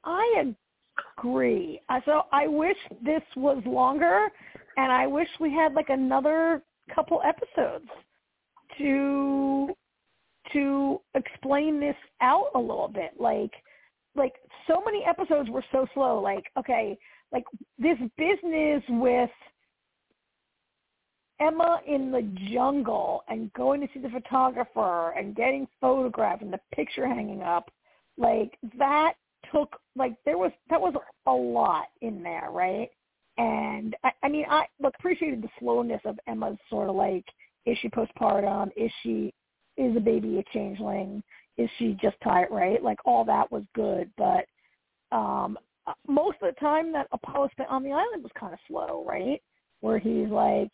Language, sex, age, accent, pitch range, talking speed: English, female, 40-59, American, 220-295 Hz, 145 wpm